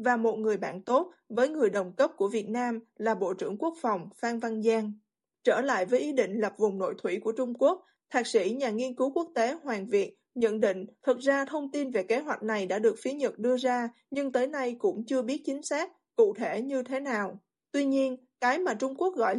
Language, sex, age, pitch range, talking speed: Vietnamese, female, 20-39, 220-275 Hz, 240 wpm